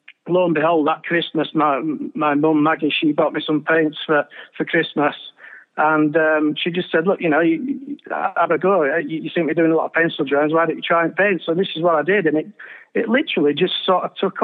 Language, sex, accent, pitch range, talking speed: English, male, British, 150-180 Hz, 255 wpm